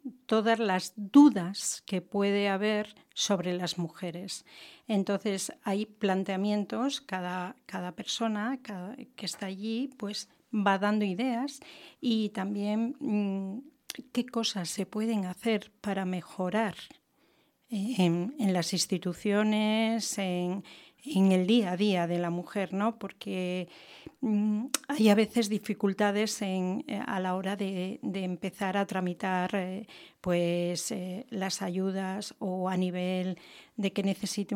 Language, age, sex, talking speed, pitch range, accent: English, 40-59, female, 115 wpm, 190-230 Hz, Spanish